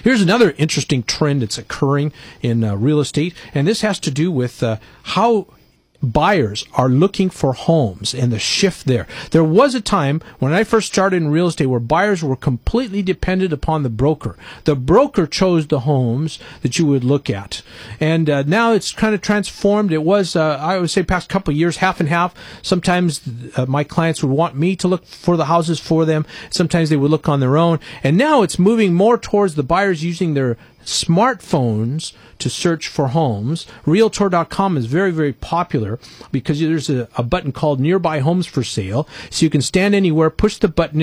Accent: American